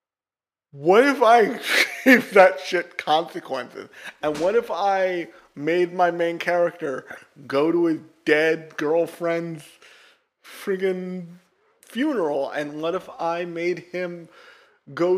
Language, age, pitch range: English, 30-49, 160-200 Hz